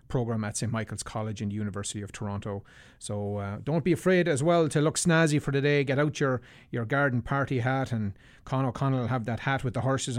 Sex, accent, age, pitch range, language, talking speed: male, Irish, 30-49, 115-140 Hz, English, 230 wpm